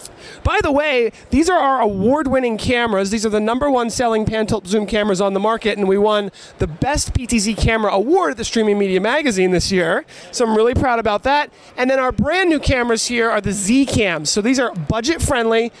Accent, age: American, 30-49